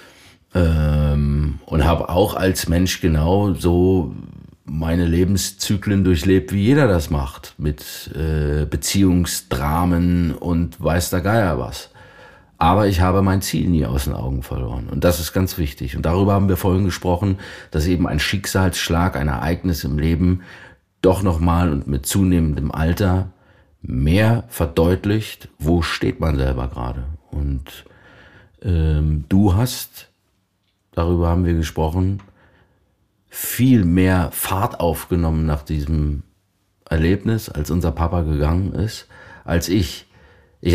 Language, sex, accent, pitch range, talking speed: German, male, German, 75-95 Hz, 130 wpm